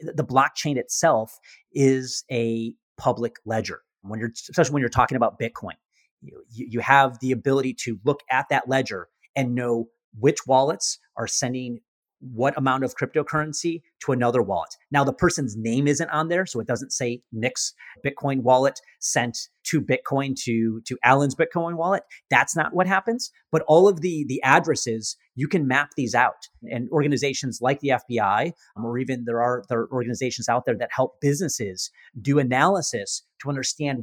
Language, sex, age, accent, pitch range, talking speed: English, male, 30-49, American, 120-145 Hz, 170 wpm